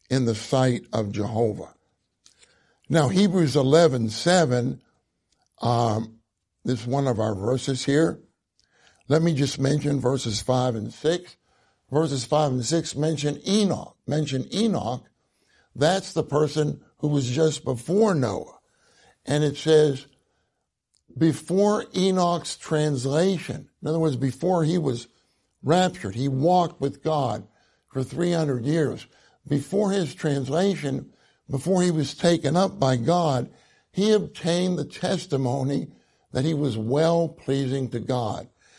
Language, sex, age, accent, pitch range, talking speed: English, male, 60-79, American, 130-170 Hz, 125 wpm